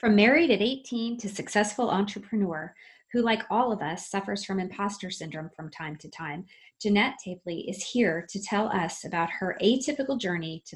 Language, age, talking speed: English, 30-49, 180 wpm